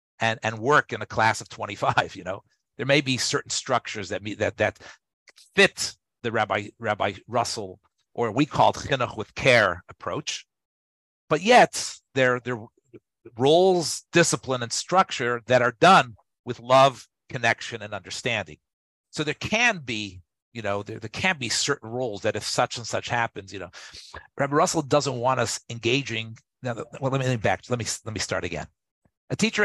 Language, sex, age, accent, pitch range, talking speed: English, male, 50-69, American, 110-145 Hz, 180 wpm